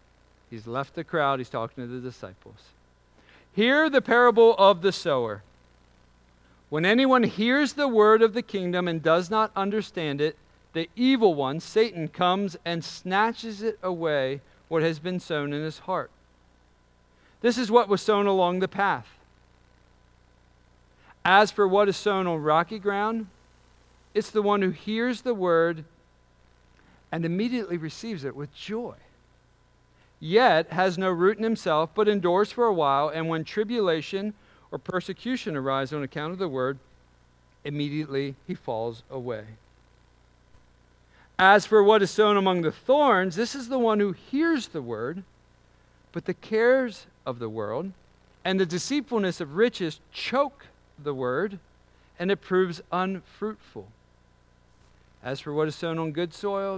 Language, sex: English, male